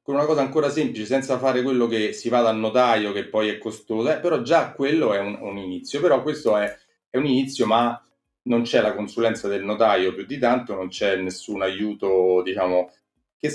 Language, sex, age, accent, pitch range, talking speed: Italian, male, 30-49, native, 100-125 Hz, 210 wpm